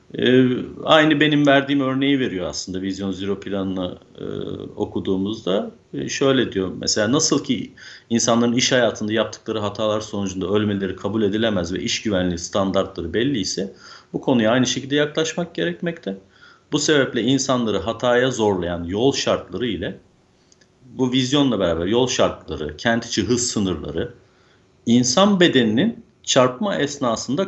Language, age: Turkish, 50-69